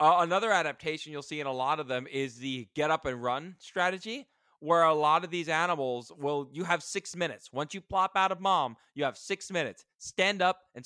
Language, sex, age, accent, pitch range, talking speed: English, male, 20-39, American, 130-170 Hz, 225 wpm